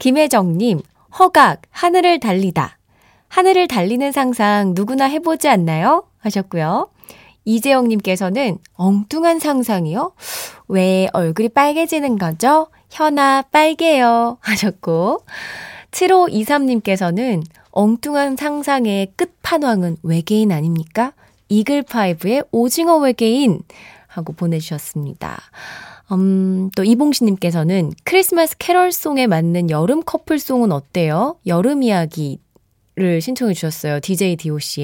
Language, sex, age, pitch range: Korean, female, 20-39, 185-300 Hz